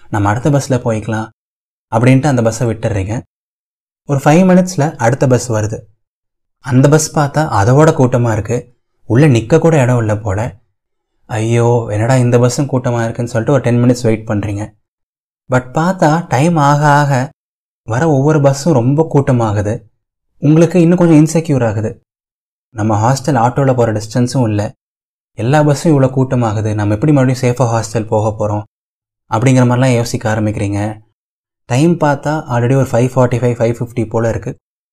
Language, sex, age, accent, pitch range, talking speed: Tamil, male, 20-39, native, 110-145 Hz, 145 wpm